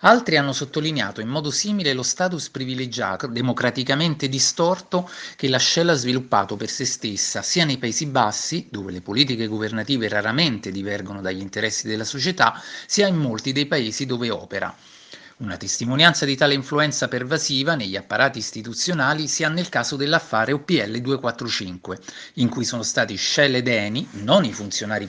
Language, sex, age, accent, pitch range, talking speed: Italian, male, 30-49, native, 115-155 Hz, 160 wpm